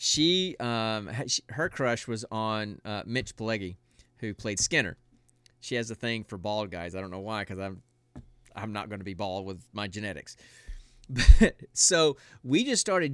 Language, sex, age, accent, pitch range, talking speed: English, male, 30-49, American, 110-140 Hz, 180 wpm